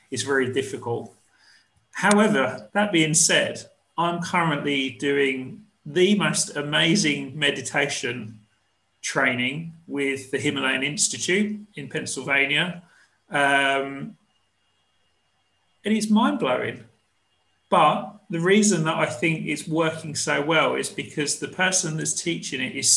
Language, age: English, 40-59